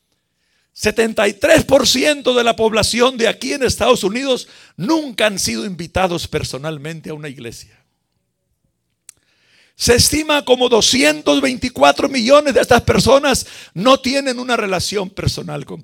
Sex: male